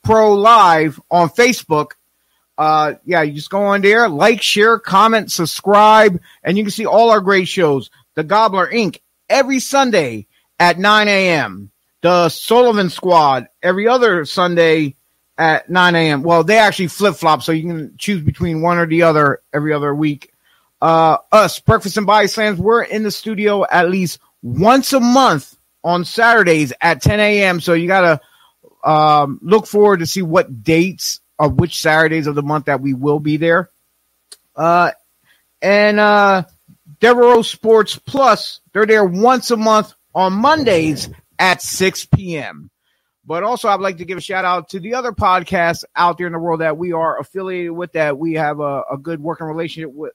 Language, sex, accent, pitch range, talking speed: English, male, American, 160-215 Hz, 175 wpm